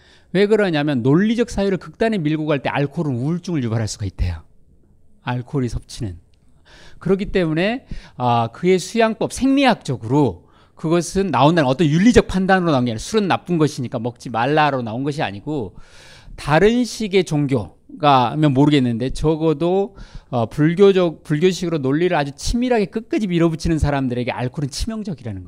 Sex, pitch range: male, 120-170 Hz